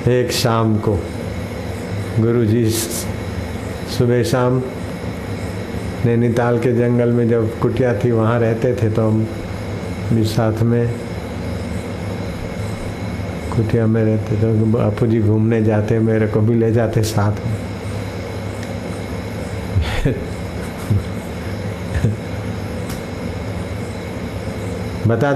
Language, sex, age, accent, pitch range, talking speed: Hindi, male, 60-79, native, 95-115 Hz, 90 wpm